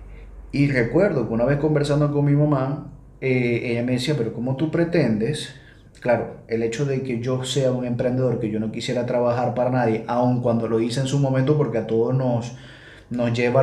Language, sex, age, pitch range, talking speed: Spanish, male, 30-49, 120-150 Hz, 205 wpm